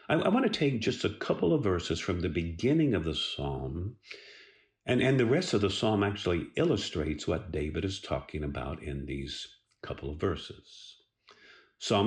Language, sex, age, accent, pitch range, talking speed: English, male, 50-69, American, 80-115 Hz, 175 wpm